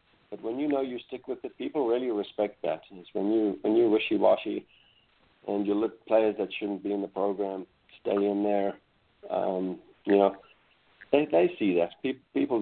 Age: 50-69